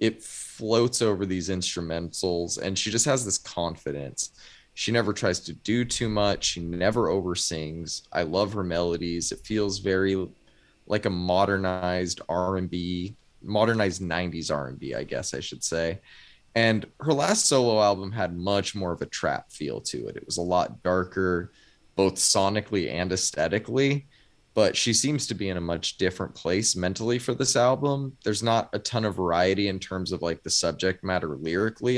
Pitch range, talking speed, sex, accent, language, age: 90-115 Hz, 180 wpm, male, American, English, 20-39